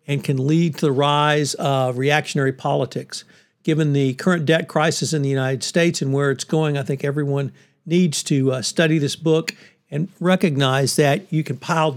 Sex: male